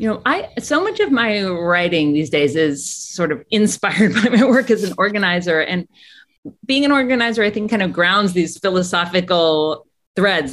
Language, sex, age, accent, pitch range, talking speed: English, female, 30-49, American, 155-215 Hz, 185 wpm